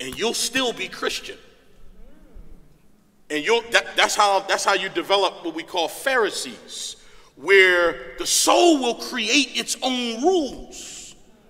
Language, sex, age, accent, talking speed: English, male, 40-59, American, 135 wpm